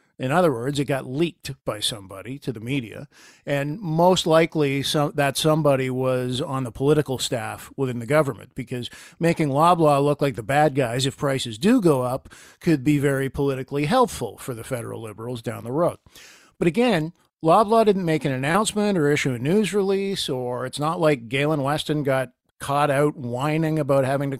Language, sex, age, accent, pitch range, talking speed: English, male, 50-69, American, 135-170 Hz, 185 wpm